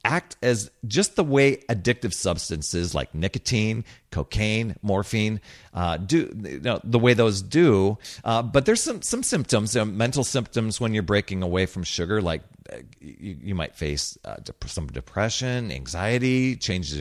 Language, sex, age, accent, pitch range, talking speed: English, male, 40-59, American, 95-135 Hz, 160 wpm